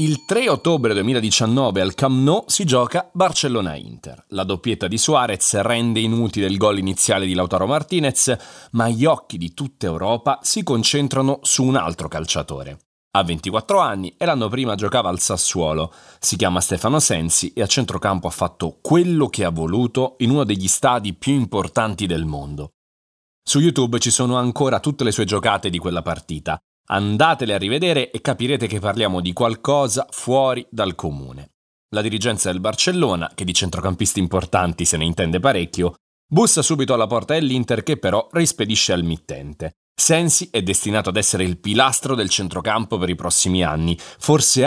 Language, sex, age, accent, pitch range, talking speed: Italian, male, 30-49, native, 90-135 Hz, 165 wpm